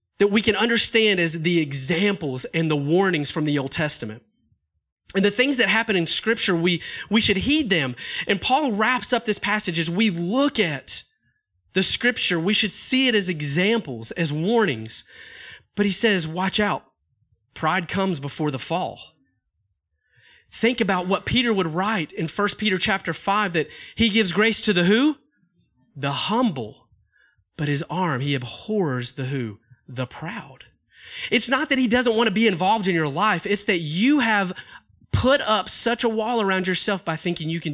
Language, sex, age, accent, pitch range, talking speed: English, male, 30-49, American, 145-210 Hz, 180 wpm